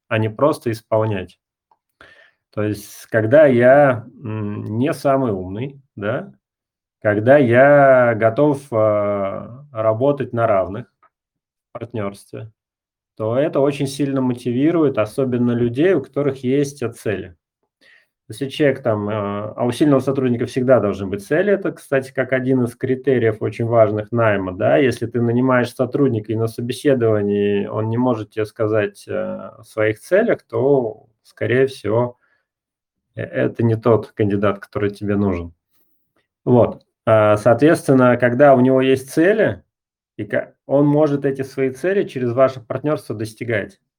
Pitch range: 110-135 Hz